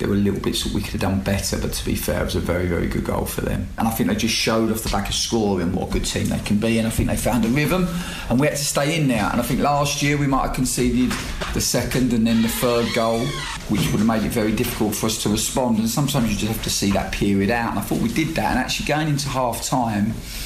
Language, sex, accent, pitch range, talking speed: English, male, British, 100-115 Hz, 300 wpm